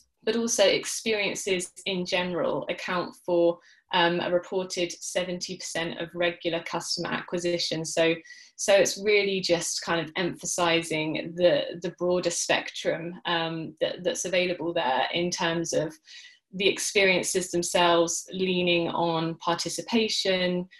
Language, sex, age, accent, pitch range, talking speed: English, female, 20-39, British, 170-190 Hz, 115 wpm